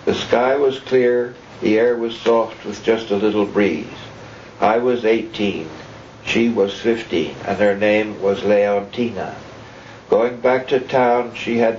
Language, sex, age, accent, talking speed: English, male, 60-79, American, 155 wpm